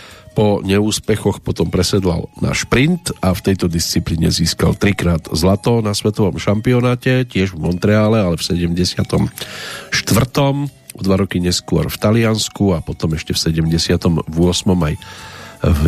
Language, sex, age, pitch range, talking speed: Slovak, male, 40-59, 85-105 Hz, 140 wpm